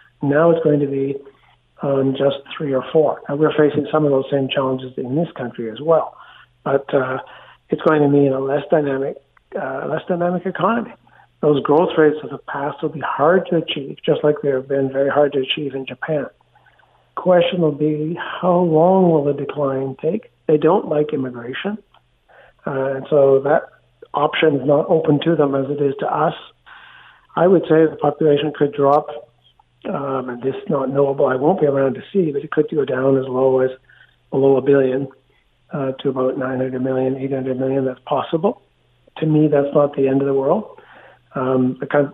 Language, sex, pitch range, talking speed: English, male, 135-155 Hz, 195 wpm